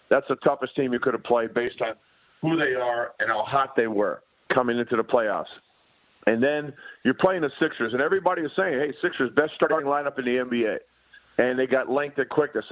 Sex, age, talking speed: male, 50-69, 215 wpm